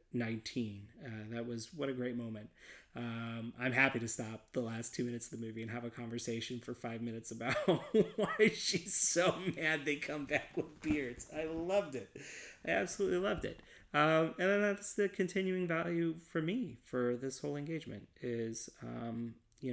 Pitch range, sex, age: 115-135 Hz, male, 30-49